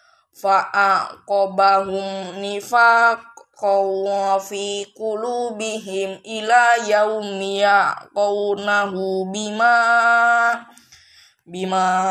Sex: female